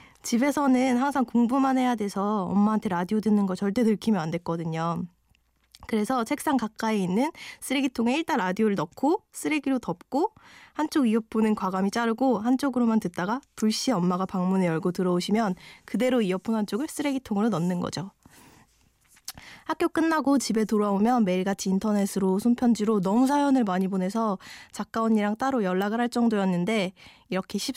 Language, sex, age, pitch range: Korean, female, 20-39, 185-245 Hz